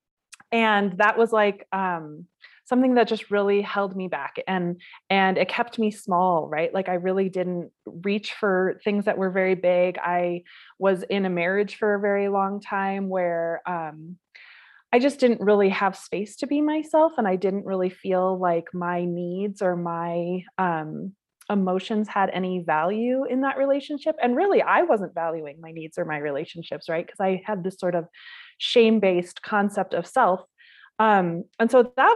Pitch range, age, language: 175-215 Hz, 20-39, English